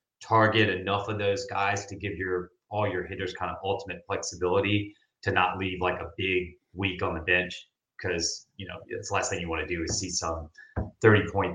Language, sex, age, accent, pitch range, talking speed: English, male, 30-49, American, 85-100 Hz, 215 wpm